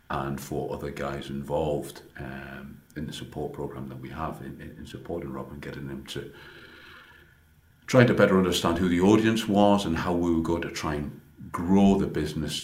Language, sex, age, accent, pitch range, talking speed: English, male, 50-69, British, 70-80 Hz, 190 wpm